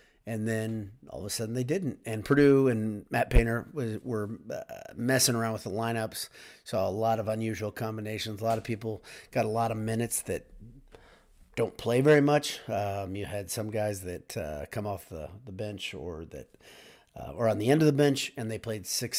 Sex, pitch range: male, 105-120 Hz